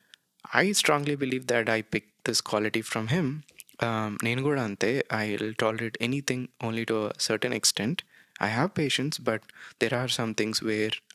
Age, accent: 20-39, native